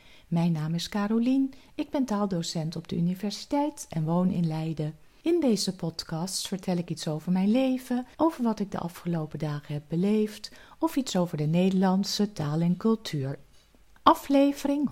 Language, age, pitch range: Dutch, 50-69, 160-225 Hz